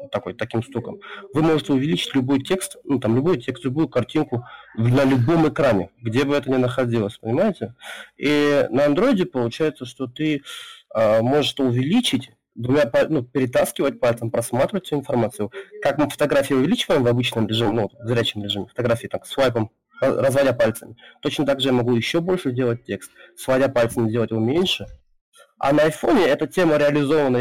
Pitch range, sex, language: 120-150 Hz, male, Russian